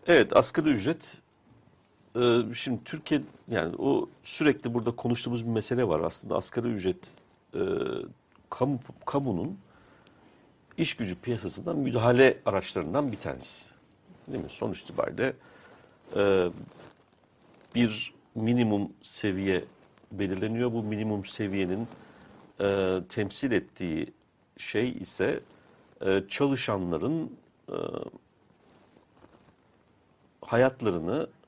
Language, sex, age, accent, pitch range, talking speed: Turkish, male, 50-69, native, 95-125 Hz, 80 wpm